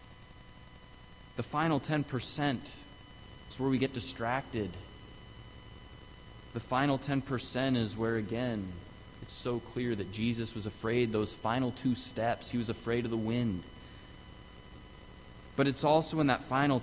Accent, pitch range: American, 100-130 Hz